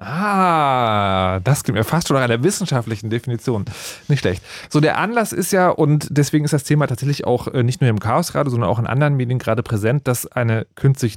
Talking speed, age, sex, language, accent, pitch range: 215 wpm, 30-49, male, German, German, 110-150 Hz